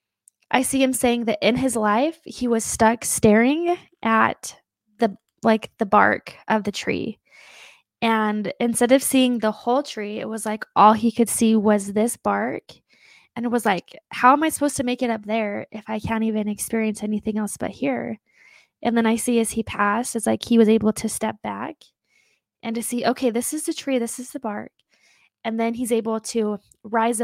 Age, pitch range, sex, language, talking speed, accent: 20-39, 215-250 Hz, female, English, 205 wpm, American